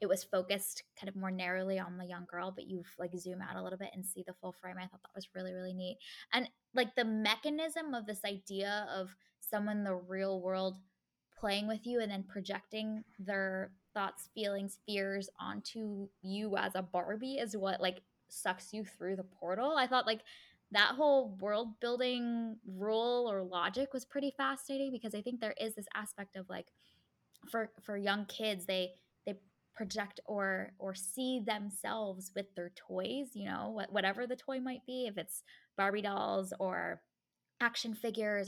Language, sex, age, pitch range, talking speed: English, female, 10-29, 190-220 Hz, 180 wpm